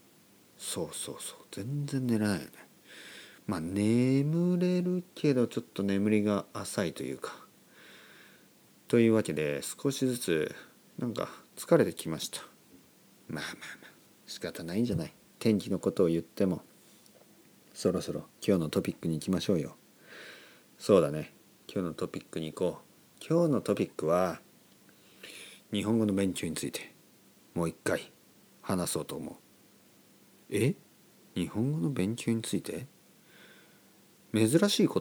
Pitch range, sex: 90-135 Hz, male